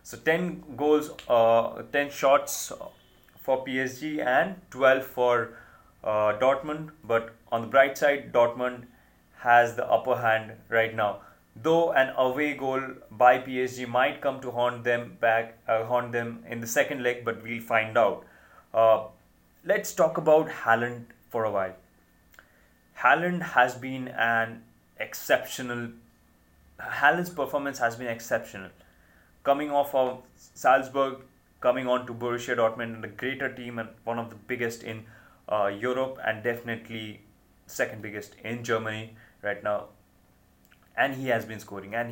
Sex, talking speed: male, 145 wpm